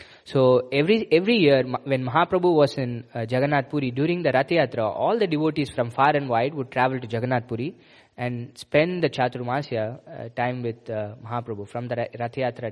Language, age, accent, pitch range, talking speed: English, 20-39, Indian, 120-150 Hz, 185 wpm